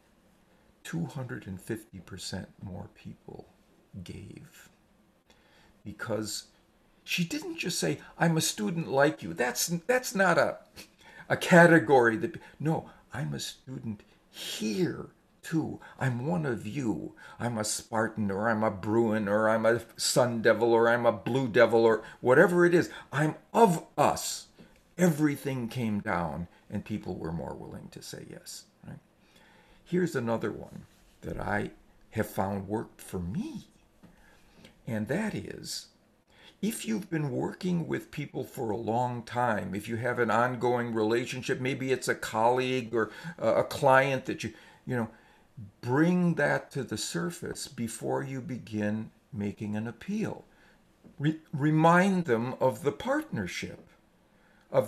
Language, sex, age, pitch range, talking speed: English, male, 50-69, 110-165 Hz, 135 wpm